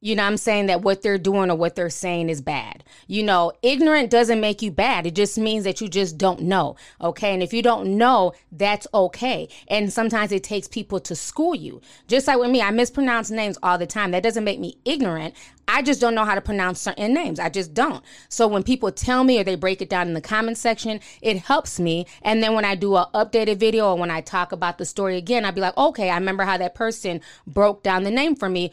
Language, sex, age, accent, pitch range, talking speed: English, female, 20-39, American, 185-230 Hz, 250 wpm